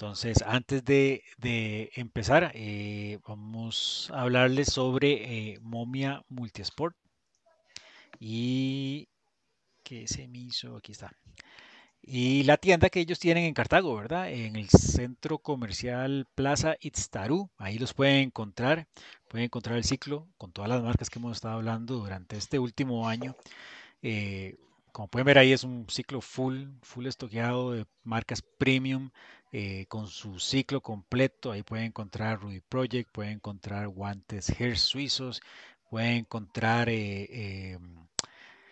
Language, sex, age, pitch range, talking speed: Spanish, male, 30-49, 110-135 Hz, 135 wpm